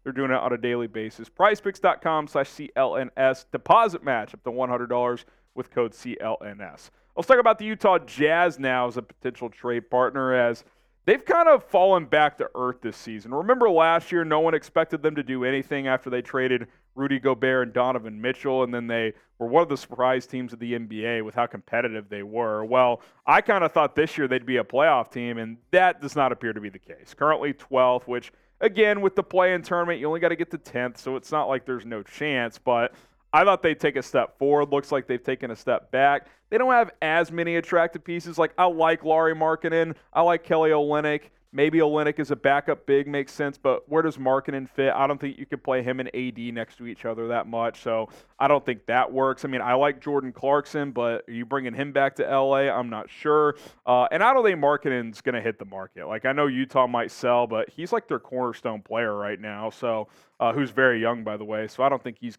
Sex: male